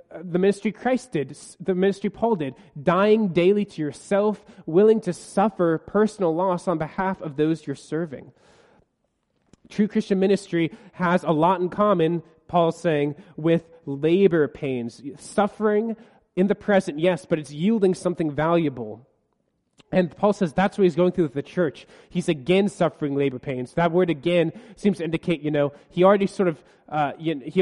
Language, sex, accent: English, male, American